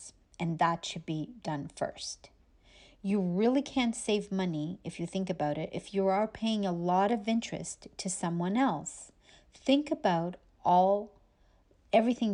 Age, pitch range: 40-59, 165-210 Hz